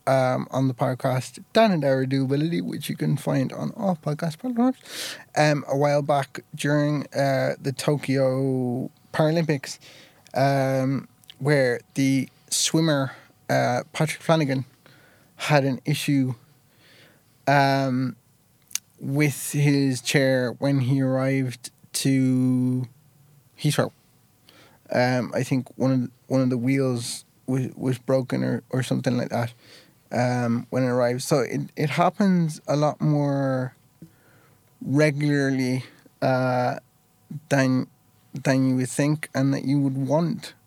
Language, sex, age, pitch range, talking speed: English, male, 20-39, 130-150 Hz, 125 wpm